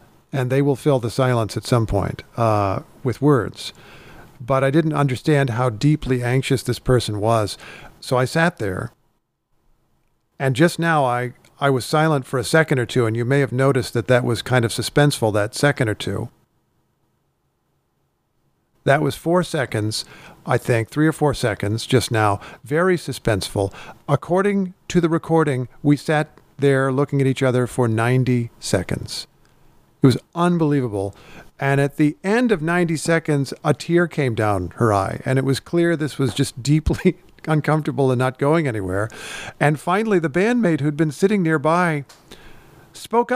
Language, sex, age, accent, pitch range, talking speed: English, male, 50-69, American, 125-160 Hz, 165 wpm